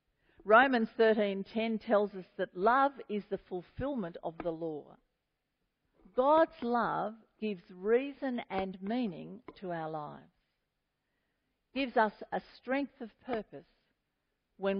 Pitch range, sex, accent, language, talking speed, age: 185-240 Hz, female, Australian, English, 115 wpm, 50-69